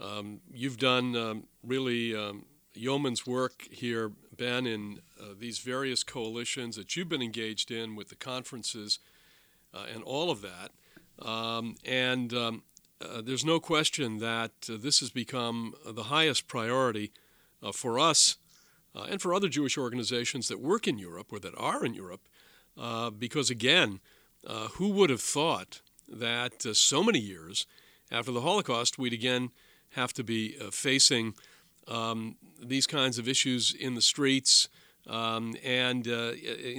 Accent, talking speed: American, 155 wpm